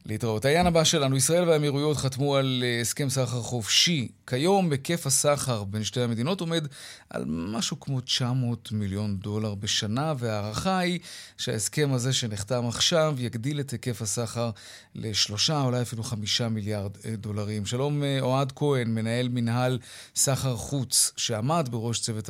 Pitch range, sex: 110-135 Hz, male